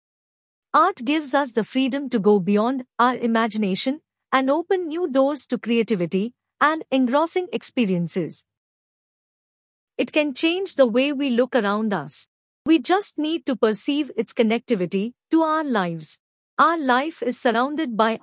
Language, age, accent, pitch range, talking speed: English, 50-69, Indian, 225-295 Hz, 140 wpm